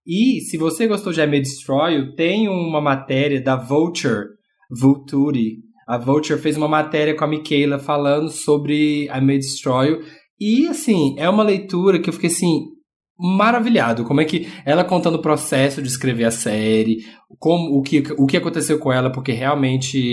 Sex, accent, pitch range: male, Brazilian, 135-170 Hz